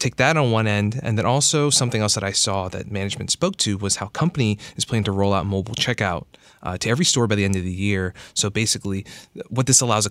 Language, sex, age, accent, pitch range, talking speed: English, male, 20-39, American, 95-115 Hz, 255 wpm